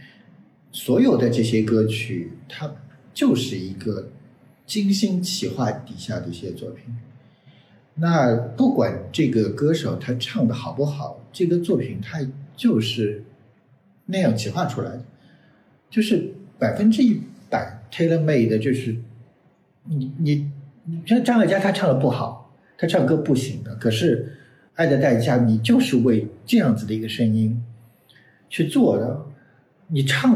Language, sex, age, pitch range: Chinese, male, 50-69, 115-150 Hz